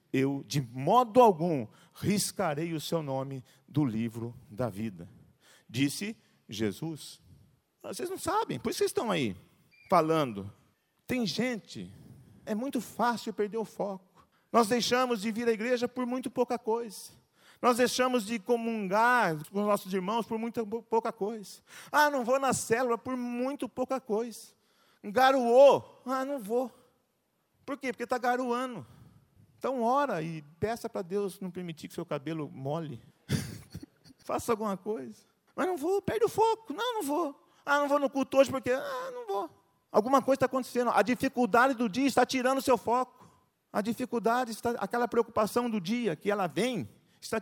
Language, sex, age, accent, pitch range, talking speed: Portuguese, male, 40-59, Brazilian, 180-255 Hz, 165 wpm